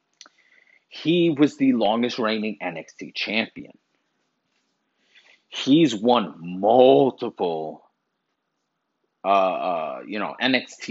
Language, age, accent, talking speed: English, 30-49, American, 85 wpm